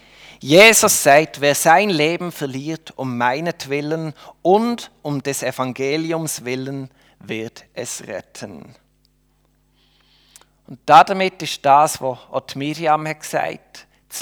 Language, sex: German, male